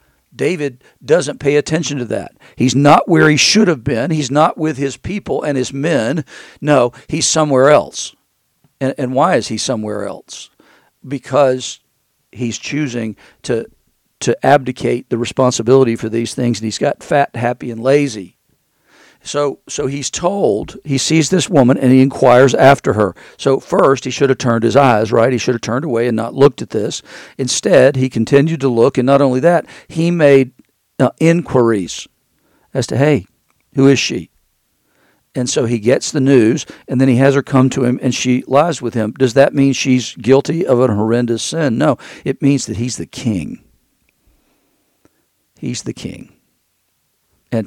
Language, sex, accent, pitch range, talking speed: English, male, American, 120-145 Hz, 175 wpm